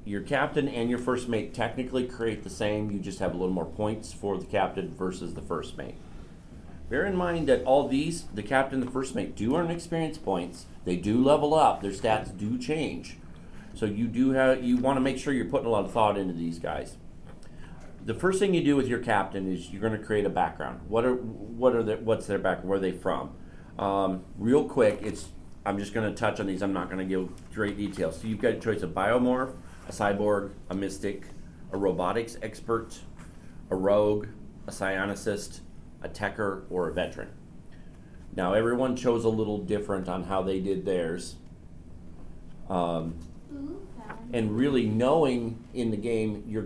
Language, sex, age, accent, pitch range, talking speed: English, male, 40-59, American, 95-115 Hz, 195 wpm